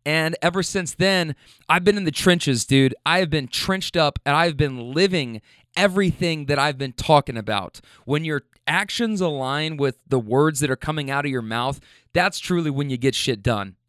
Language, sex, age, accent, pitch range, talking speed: English, male, 20-39, American, 140-190 Hz, 200 wpm